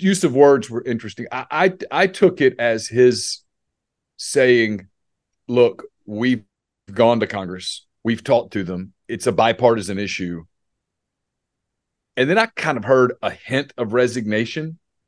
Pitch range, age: 115-155 Hz, 40-59